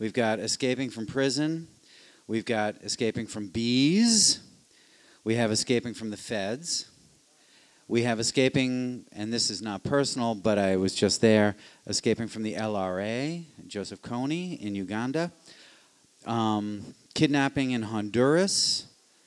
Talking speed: 130 wpm